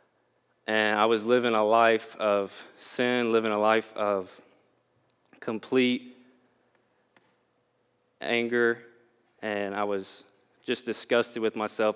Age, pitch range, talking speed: 20-39, 110-125 Hz, 105 wpm